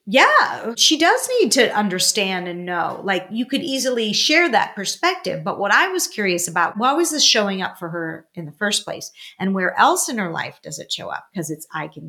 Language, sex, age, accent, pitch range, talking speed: English, female, 40-59, American, 190-250 Hz, 230 wpm